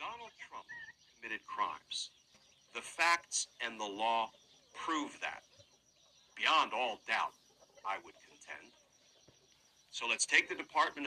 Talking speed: 105 wpm